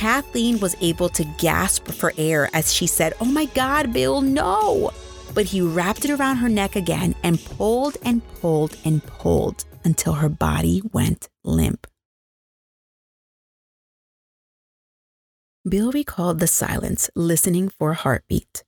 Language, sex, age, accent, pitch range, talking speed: English, female, 30-49, American, 145-210 Hz, 135 wpm